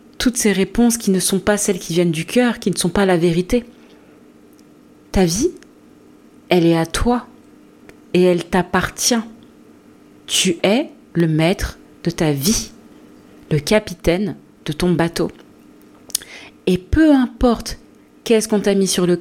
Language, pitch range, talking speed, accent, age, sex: French, 185-225 Hz, 150 wpm, French, 30-49, female